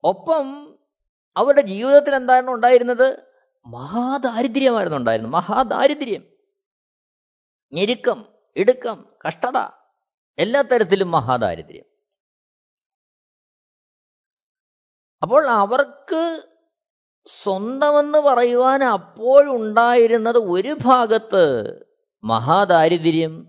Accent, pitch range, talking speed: native, 180-270 Hz, 55 wpm